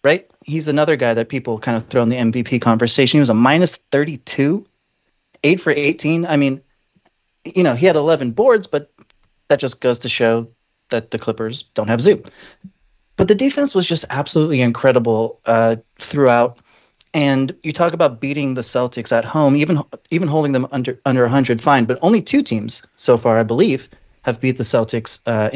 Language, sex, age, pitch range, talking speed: English, male, 30-49, 120-150 Hz, 190 wpm